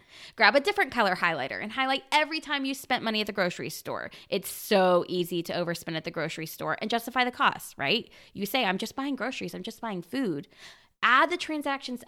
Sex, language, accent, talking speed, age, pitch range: female, English, American, 215 wpm, 20-39, 205-285 Hz